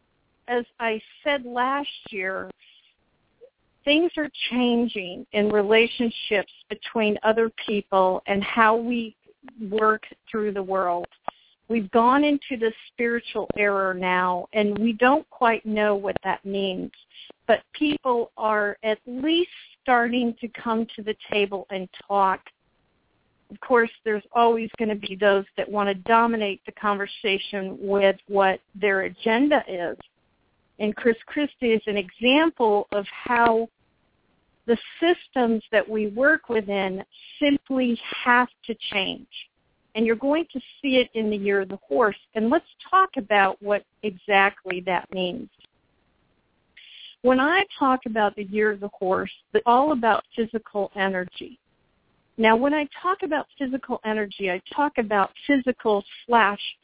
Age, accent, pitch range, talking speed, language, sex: 50-69, American, 200-250 Hz, 140 wpm, English, female